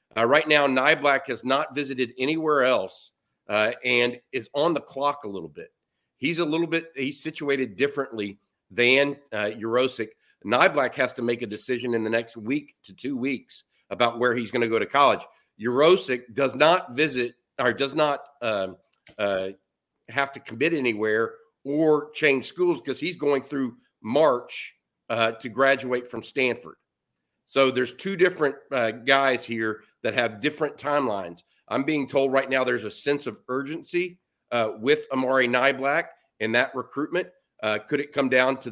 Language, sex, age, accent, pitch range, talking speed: English, male, 50-69, American, 120-145 Hz, 170 wpm